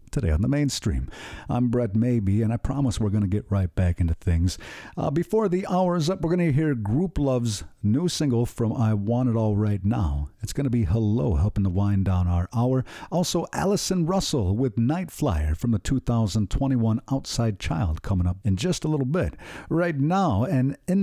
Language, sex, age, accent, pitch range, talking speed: English, male, 50-69, American, 105-145 Hz, 205 wpm